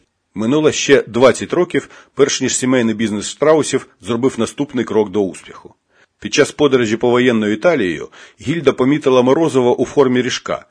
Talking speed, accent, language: 145 wpm, native, Ukrainian